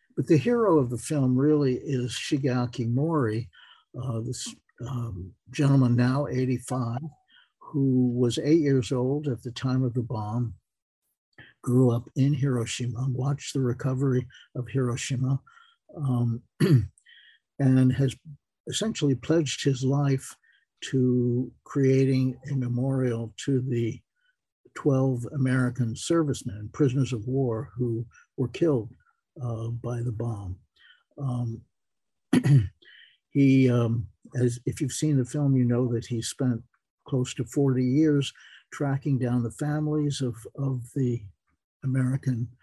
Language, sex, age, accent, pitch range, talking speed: English, male, 60-79, American, 125-140 Hz, 125 wpm